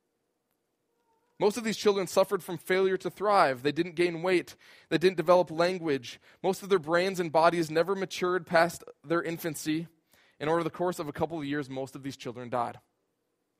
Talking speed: 185 wpm